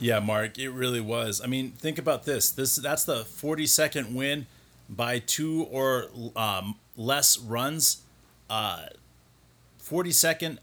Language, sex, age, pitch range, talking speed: English, male, 30-49, 120-150 Hz, 130 wpm